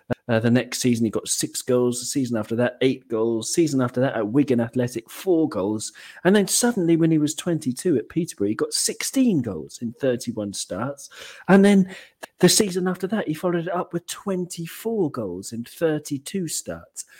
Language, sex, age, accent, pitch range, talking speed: English, male, 40-59, British, 115-170 Hz, 190 wpm